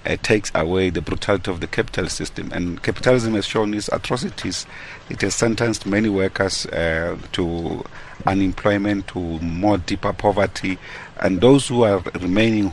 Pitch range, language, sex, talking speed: 95-110 Hz, English, male, 150 wpm